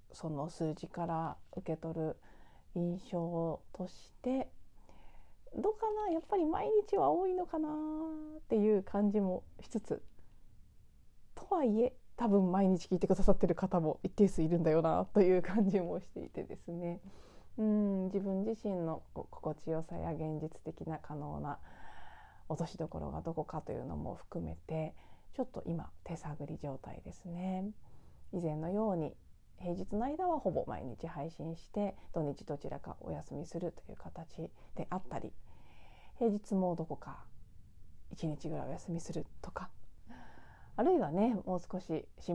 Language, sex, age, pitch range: Japanese, female, 30-49, 160-215 Hz